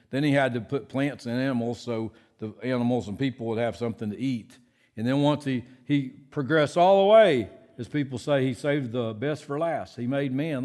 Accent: American